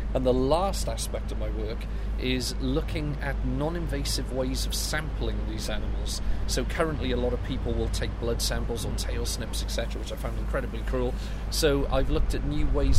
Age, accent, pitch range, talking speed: 40-59, British, 110-140 Hz, 190 wpm